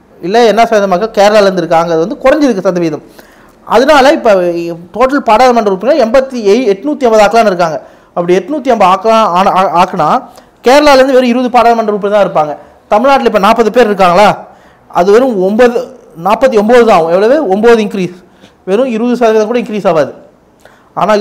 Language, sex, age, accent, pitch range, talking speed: Tamil, male, 30-49, native, 185-240 Hz, 145 wpm